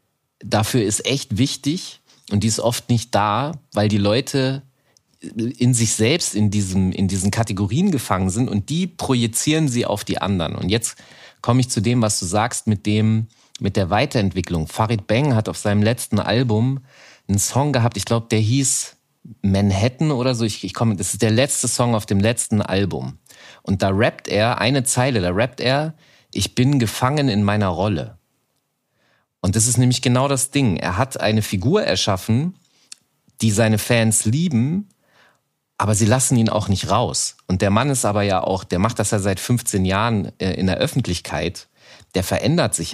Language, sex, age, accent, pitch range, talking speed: German, male, 30-49, German, 100-130 Hz, 185 wpm